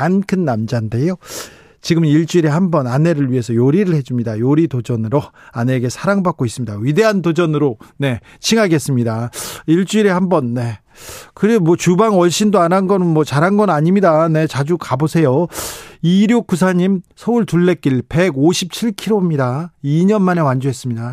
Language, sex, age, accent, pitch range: Korean, male, 40-59, native, 130-180 Hz